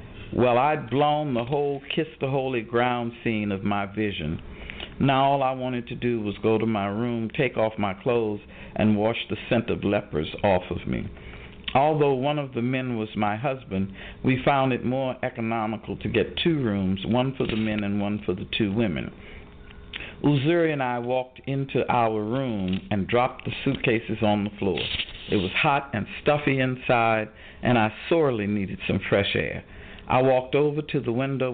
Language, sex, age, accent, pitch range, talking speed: English, male, 50-69, American, 100-130 Hz, 185 wpm